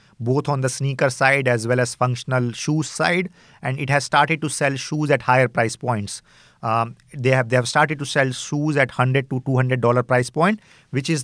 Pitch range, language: 130-155 Hz, English